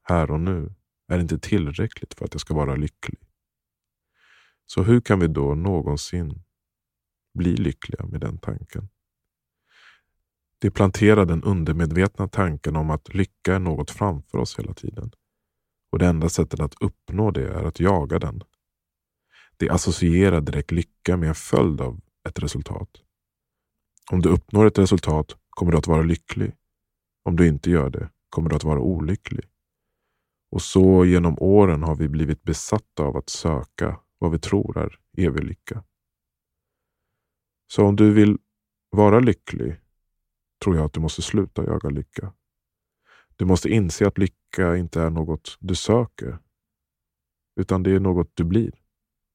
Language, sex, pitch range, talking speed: Swedish, male, 80-95 Hz, 150 wpm